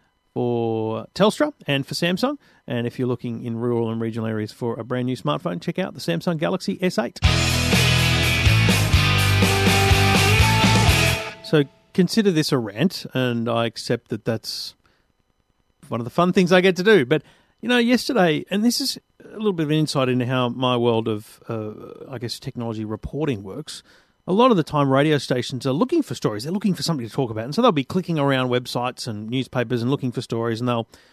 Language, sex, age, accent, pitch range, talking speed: English, male, 40-59, Australian, 115-165 Hz, 195 wpm